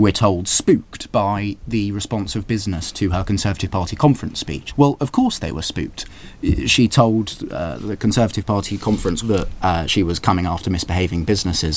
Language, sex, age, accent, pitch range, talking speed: English, male, 20-39, British, 100-130 Hz, 180 wpm